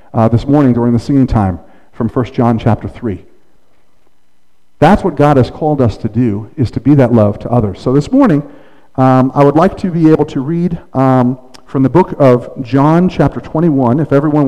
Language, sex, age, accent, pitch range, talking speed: English, male, 50-69, American, 120-150 Hz, 205 wpm